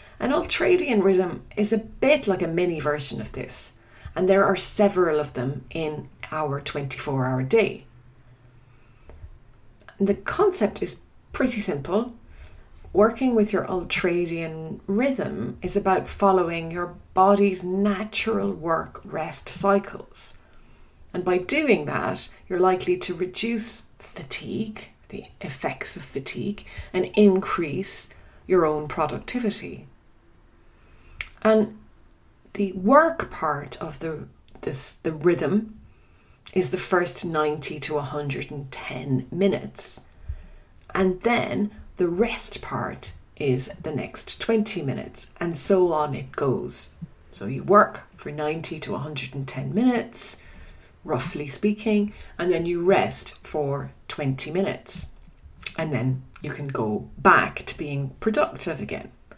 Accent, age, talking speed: Irish, 30-49, 120 wpm